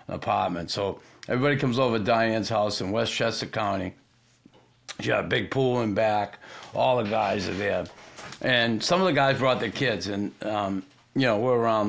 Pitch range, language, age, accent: 105-130 Hz, English, 50-69, American